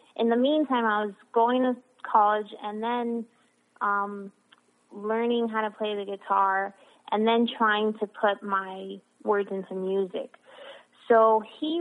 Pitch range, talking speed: 195-235 Hz, 140 wpm